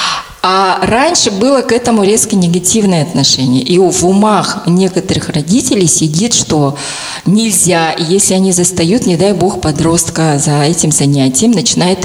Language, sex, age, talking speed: Russian, female, 20-39, 135 wpm